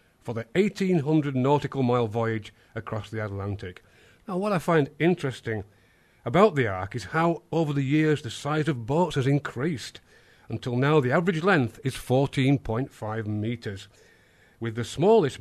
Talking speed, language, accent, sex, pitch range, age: 150 wpm, English, British, male, 115-165 Hz, 40-59